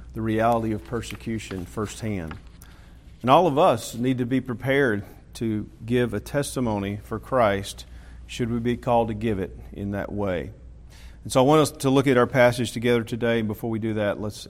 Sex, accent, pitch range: male, American, 100-125 Hz